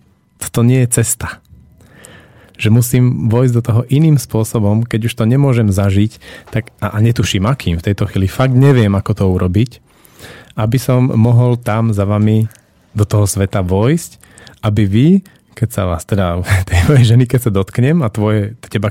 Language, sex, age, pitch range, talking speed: Slovak, male, 30-49, 95-115 Hz, 170 wpm